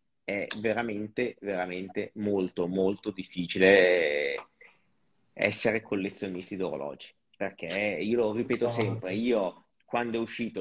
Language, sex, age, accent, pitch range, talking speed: Italian, male, 30-49, native, 95-115 Hz, 100 wpm